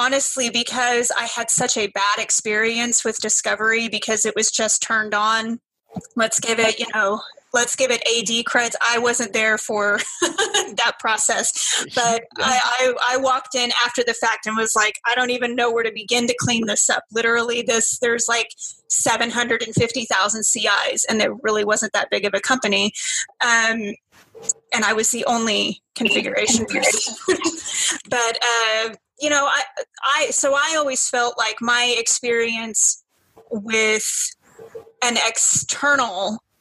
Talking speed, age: 155 wpm, 30-49